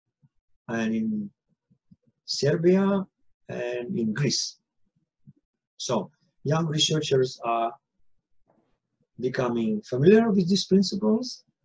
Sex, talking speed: male, 75 wpm